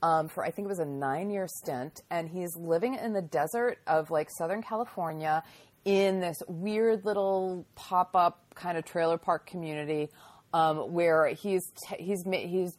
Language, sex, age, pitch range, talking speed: English, female, 30-49, 140-185 Hz, 165 wpm